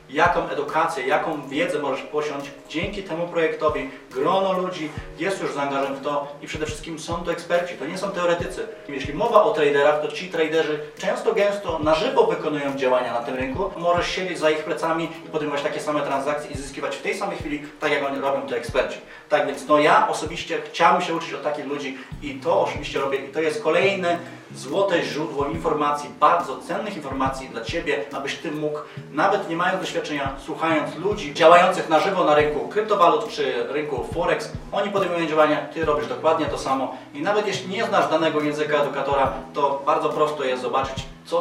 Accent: native